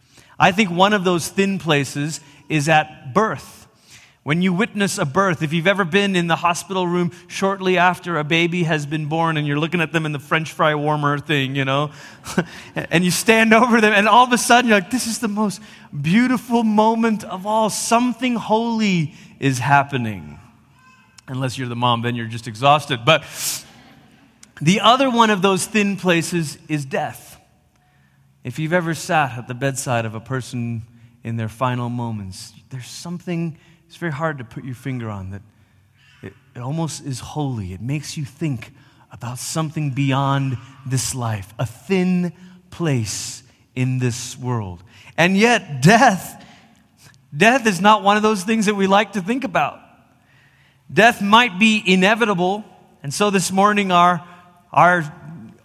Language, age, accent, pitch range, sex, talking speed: English, 30-49, American, 130-195 Hz, male, 170 wpm